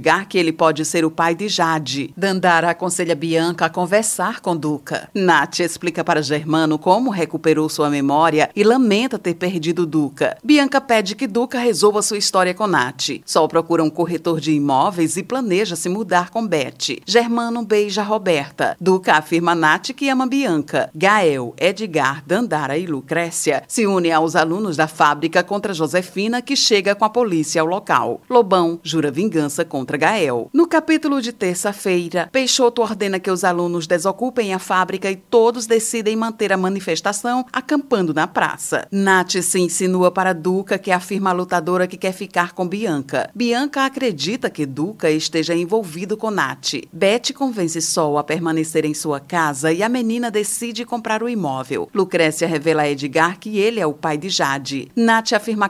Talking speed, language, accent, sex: 165 wpm, Portuguese, Brazilian, female